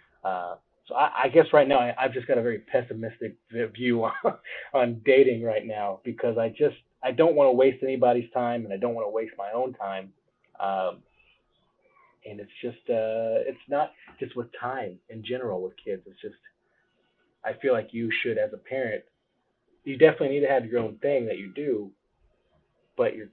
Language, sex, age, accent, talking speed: English, male, 30-49, American, 195 wpm